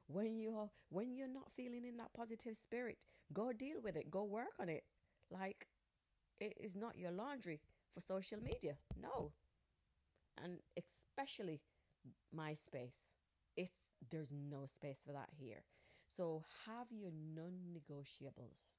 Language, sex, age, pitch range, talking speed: English, female, 30-49, 140-220 Hz, 135 wpm